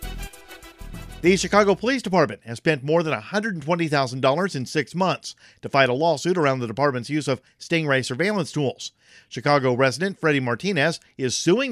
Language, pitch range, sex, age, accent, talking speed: English, 125-160 Hz, male, 50-69, American, 155 wpm